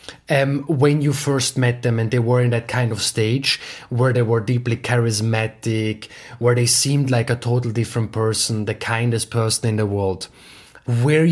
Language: English